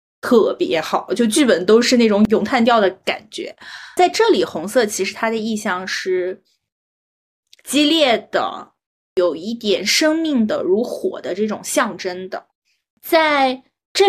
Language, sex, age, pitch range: Chinese, female, 20-39, 195-290 Hz